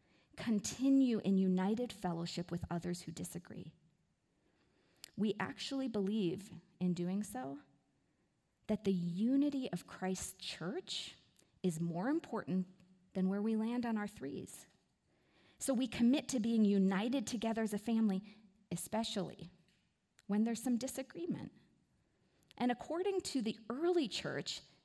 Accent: American